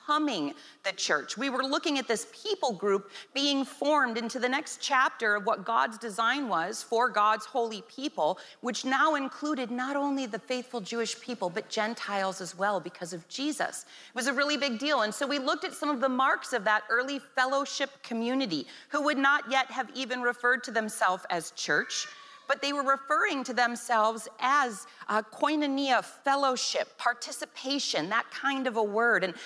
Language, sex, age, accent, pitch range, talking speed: English, female, 40-59, American, 215-275 Hz, 180 wpm